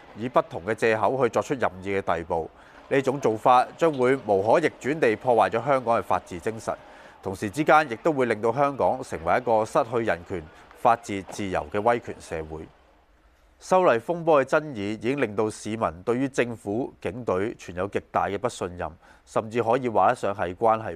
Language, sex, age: Chinese, male, 20-39